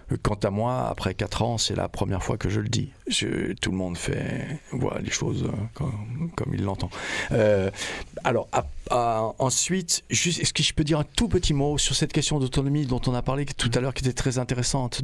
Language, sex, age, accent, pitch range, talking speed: French, male, 50-69, French, 105-135 Hz, 220 wpm